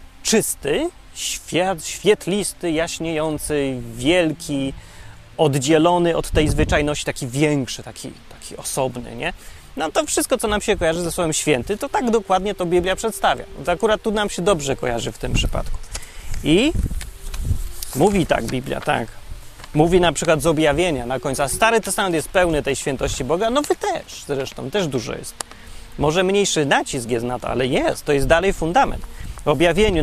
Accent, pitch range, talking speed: native, 135-185 Hz, 160 wpm